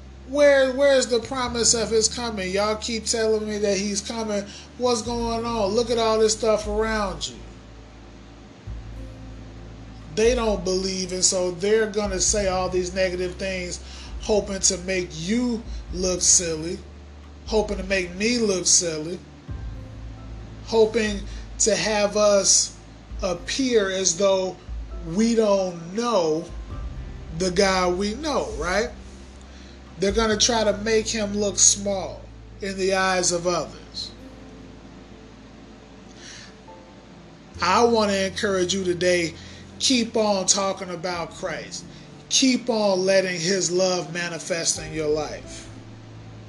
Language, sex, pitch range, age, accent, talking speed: English, male, 135-215 Hz, 20-39, American, 125 wpm